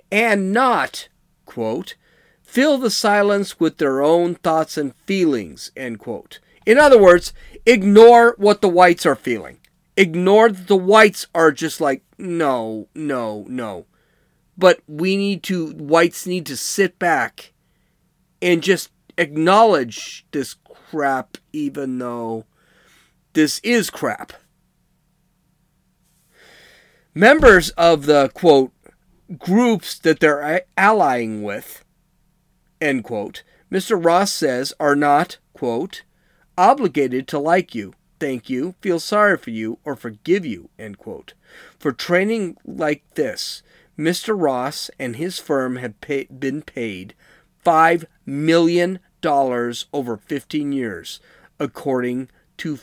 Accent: American